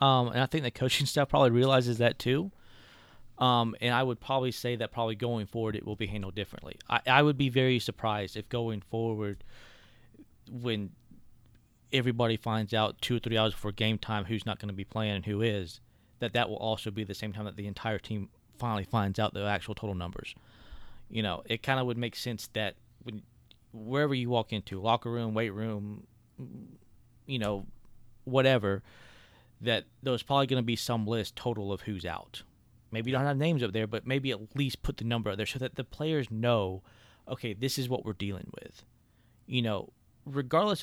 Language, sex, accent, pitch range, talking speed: English, male, American, 110-125 Hz, 200 wpm